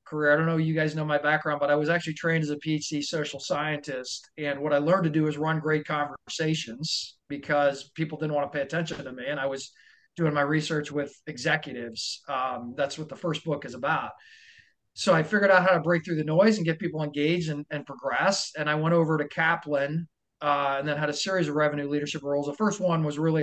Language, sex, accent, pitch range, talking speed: English, male, American, 145-175 Hz, 240 wpm